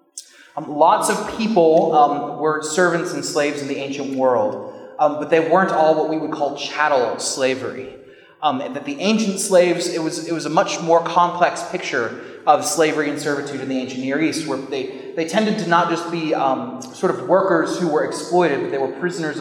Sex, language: male, English